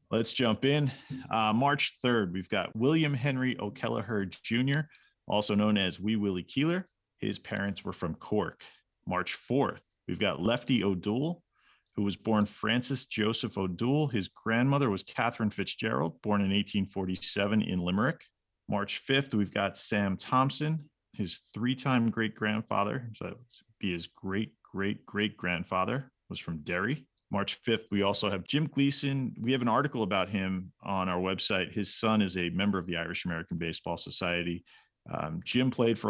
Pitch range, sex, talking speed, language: 90-115 Hz, male, 155 wpm, English